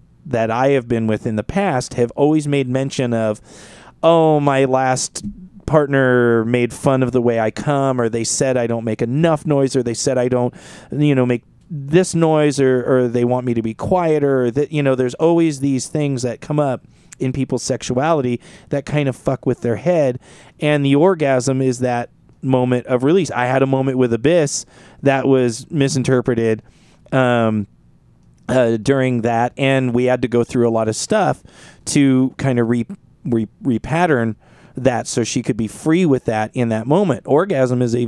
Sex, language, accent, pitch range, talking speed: male, English, American, 120-140 Hz, 190 wpm